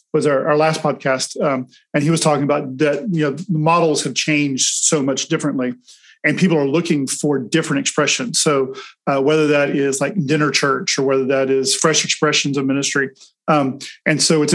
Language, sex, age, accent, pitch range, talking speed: English, male, 40-59, American, 140-165 Hz, 195 wpm